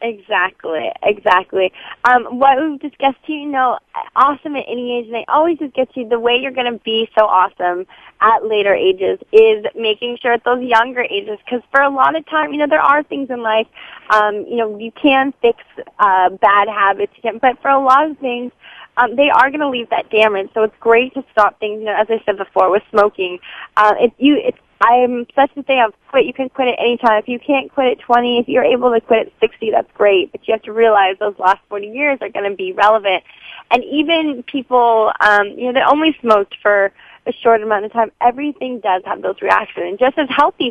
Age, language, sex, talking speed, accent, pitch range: 20-39, English, female, 235 wpm, American, 210-270 Hz